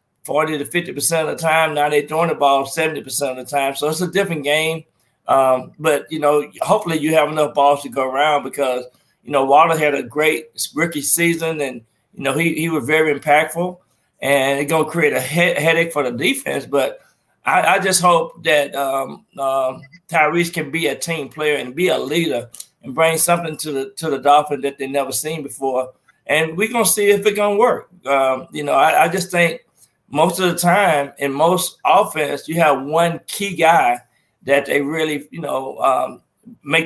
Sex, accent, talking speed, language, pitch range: male, American, 205 wpm, English, 140-170 Hz